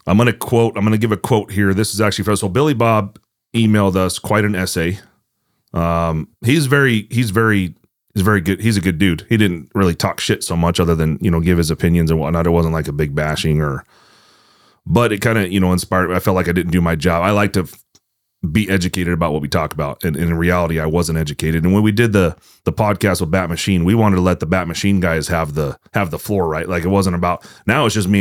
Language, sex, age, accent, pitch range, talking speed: English, male, 30-49, American, 85-105 Hz, 265 wpm